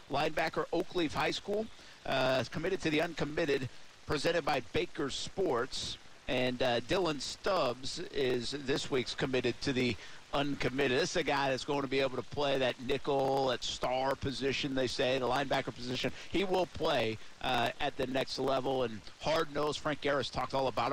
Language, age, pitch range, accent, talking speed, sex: English, 50-69, 130-160 Hz, American, 175 wpm, male